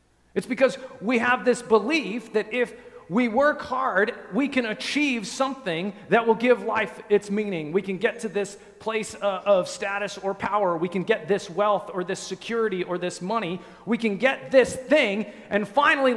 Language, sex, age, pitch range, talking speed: English, male, 40-59, 185-245 Hz, 180 wpm